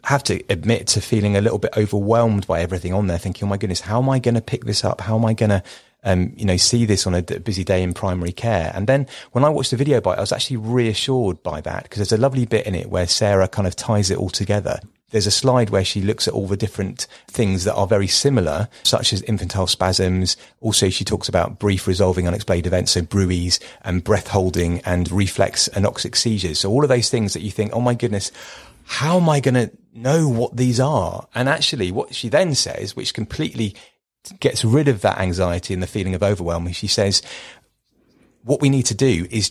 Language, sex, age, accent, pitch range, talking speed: English, male, 30-49, British, 95-115 Hz, 235 wpm